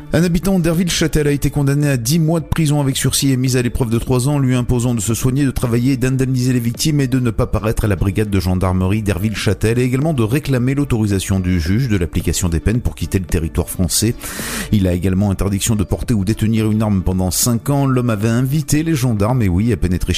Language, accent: French, French